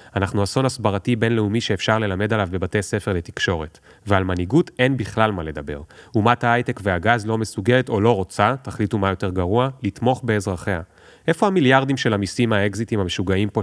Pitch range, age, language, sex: 95-120 Hz, 30-49, Hebrew, male